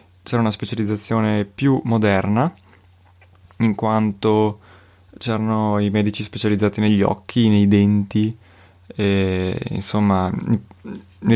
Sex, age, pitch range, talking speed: male, 20-39, 95-110 Hz, 95 wpm